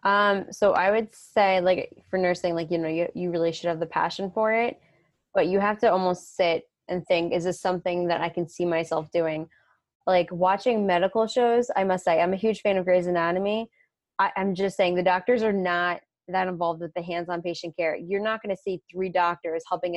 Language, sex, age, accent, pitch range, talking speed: English, female, 20-39, American, 165-190 Hz, 220 wpm